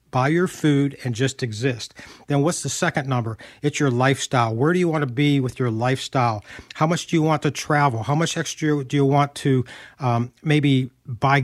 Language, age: English, 50-69